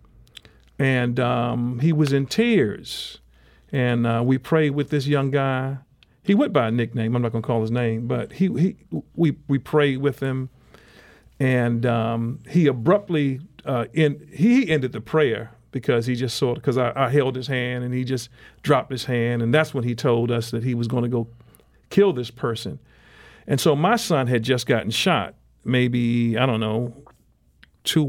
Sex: male